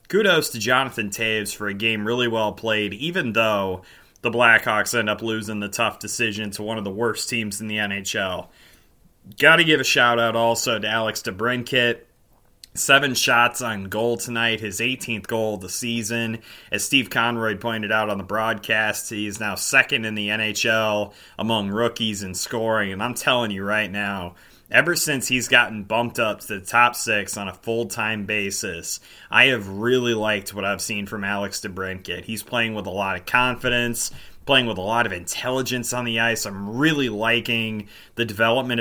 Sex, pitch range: male, 105-120 Hz